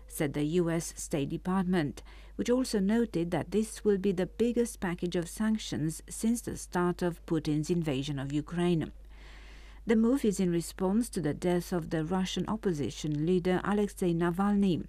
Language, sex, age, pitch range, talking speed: English, female, 50-69, 160-200 Hz, 160 wpm